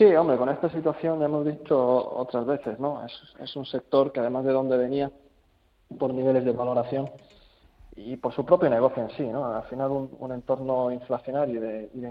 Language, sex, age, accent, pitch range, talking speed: Spanish, male, 20-39, Spanish, 125-145 Hz, 205 wpm